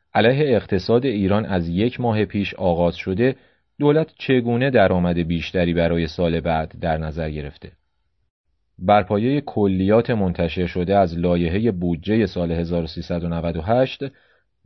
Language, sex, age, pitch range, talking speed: English, male, 40-59, 85-105 Hz, 120 wpm